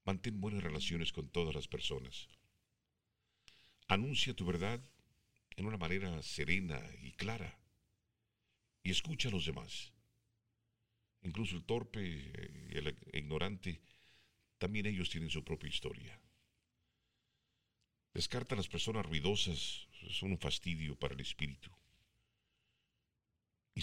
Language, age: English, 50-69